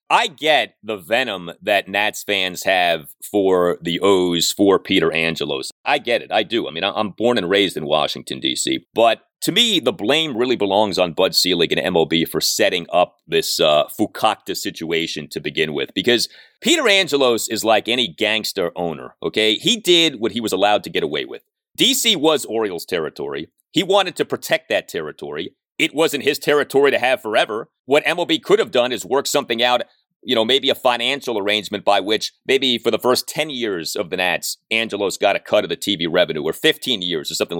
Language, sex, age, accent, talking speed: English, male, 30-49, American, 200 wpm